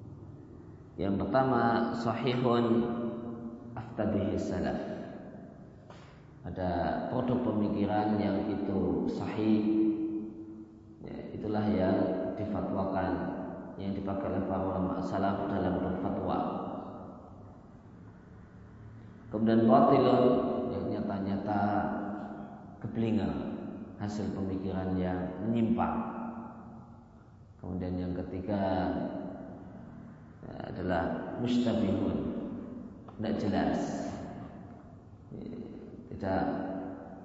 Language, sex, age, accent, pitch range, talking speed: Indonesian, male, 20-39, native, 95-115 Hz, 65 wpm